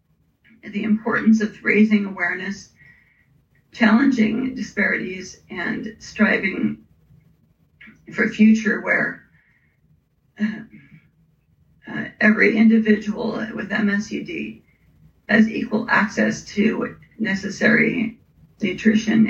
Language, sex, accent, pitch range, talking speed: English, female, American, 210-230 Hz, 80 wpm